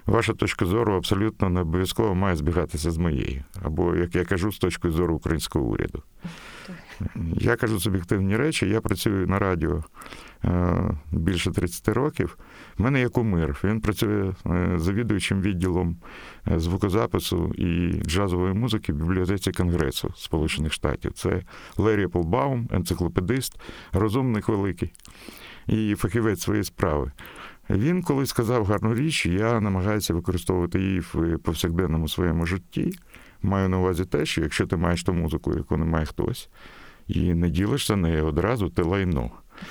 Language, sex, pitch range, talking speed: Ukrainian, male, 85-110 Hz, 140 wpm